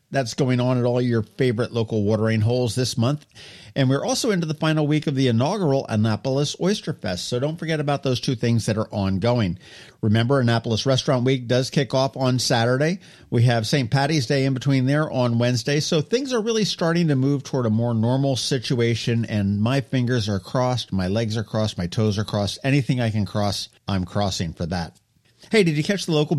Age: 50-69